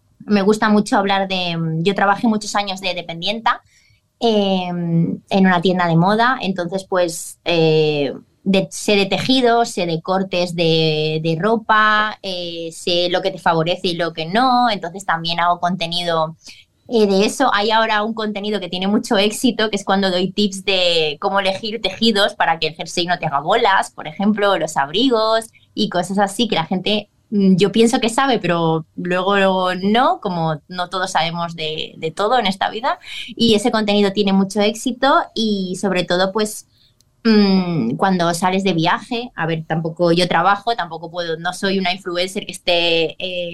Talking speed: 175 wpm